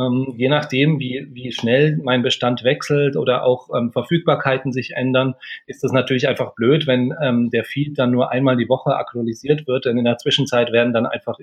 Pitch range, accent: 120-135 Hz, German